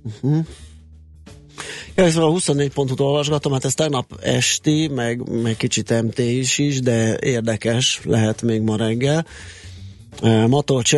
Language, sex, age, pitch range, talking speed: Hungarian, male, 30-49, 105-130 Hz, 130 wpm